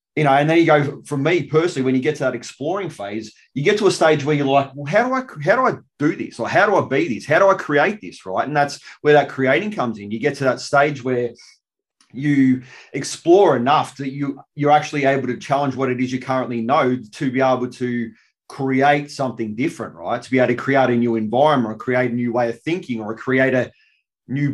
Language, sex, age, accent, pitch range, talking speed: English, male, 30-49, Australian, 120-145 Hz, 245 wpm